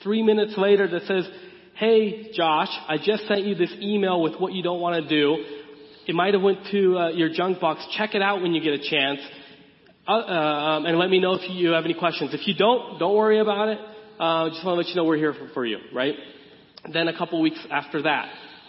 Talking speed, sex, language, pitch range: 245 wpm, male, English, 140-175 Hz